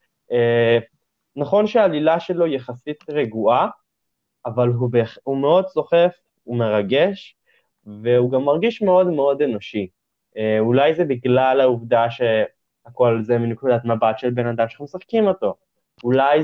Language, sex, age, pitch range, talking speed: Hebrew, male, 20-39, 120-170 Hz, 130 wpm